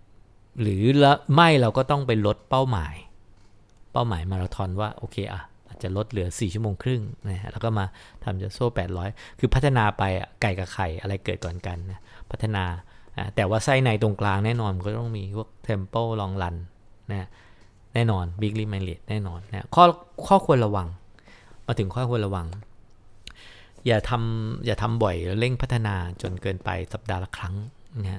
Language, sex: English, male